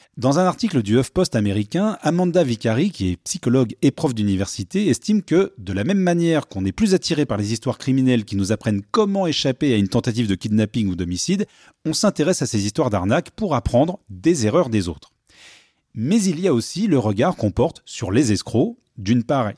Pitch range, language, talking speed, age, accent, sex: 105-155 Hz, French, 200 wpm, 30-49, French, male